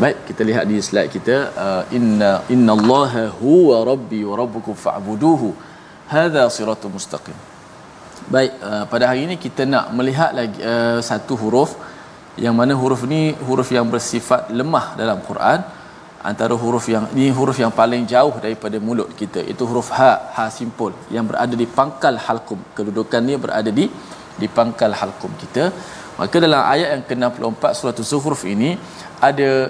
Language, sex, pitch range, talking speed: Malayalam, male, 115-135 Hz, 165 wpm